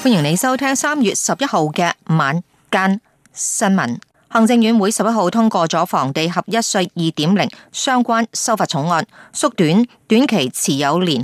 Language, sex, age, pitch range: Chinese, female, 30-49, 175-230 Hz